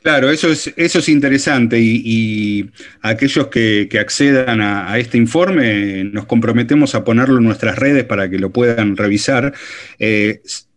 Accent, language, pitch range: Argentinian, Spanish, 115-155 Hz